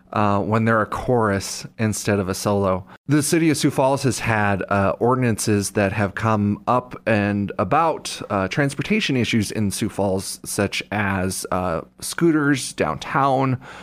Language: English